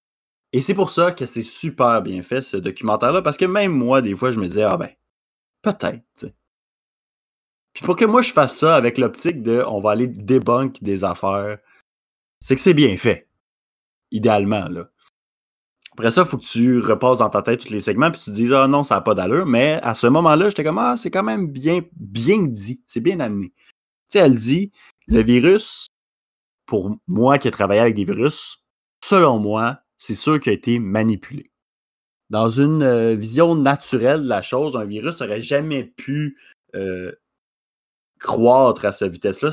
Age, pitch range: 30-49, 110-145 Hz